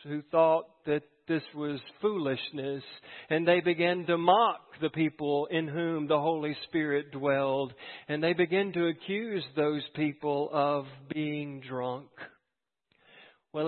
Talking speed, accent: 130 wpm, American